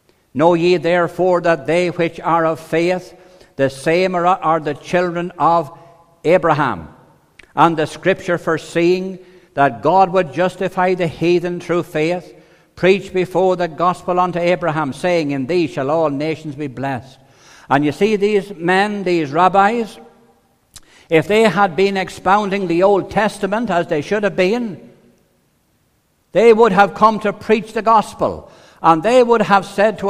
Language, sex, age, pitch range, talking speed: English, male, 60-79, 160-205 Hz, 150 wpm